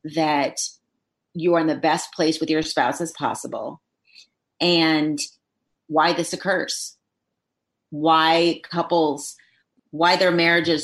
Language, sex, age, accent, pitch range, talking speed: English, female, 30-49, American, 150-165 Hz, 115 wpm